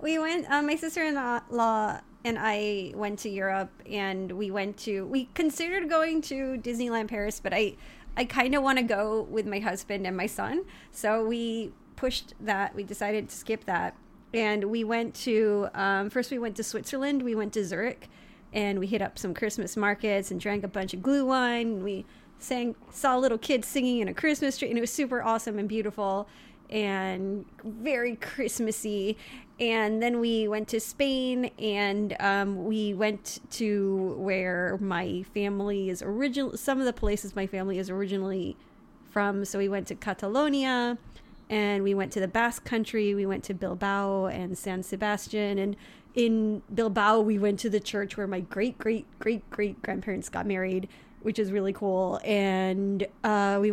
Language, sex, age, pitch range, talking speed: English, female, 30-49, 200-240 Hz, 175 wpm